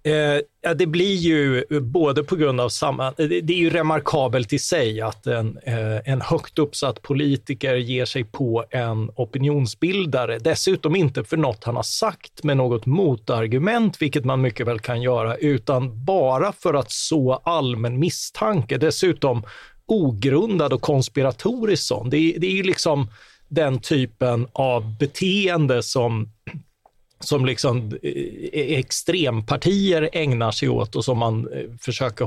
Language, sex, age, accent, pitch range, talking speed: Swedish, male, 30-49, native, 120-155 Hz, 135 wpm